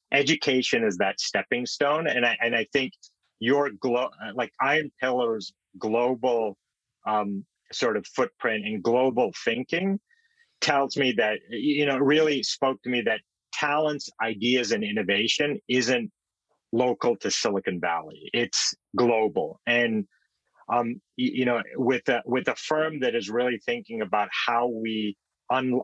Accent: American